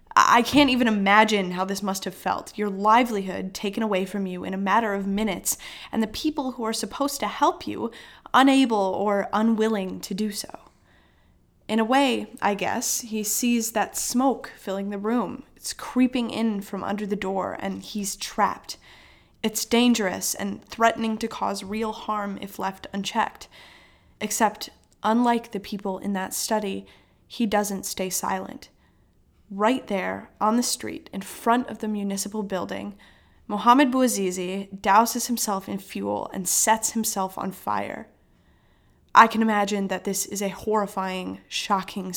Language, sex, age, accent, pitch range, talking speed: English, female, 10-29, American, 195-225 Hz, 155 wpm